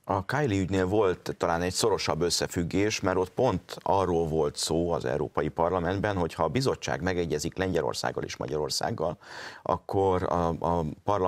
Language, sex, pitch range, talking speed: Hungarian, male, 80-105 Hz, 150 wpm